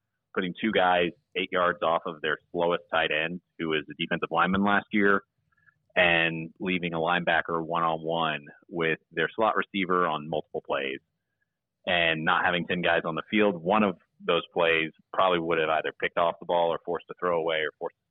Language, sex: English, male